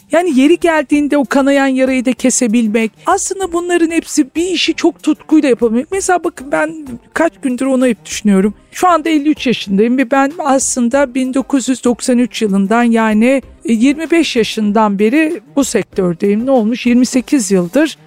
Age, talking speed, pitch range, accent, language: 50-69, 140 wpm, 225-285 Hz, native, Turkish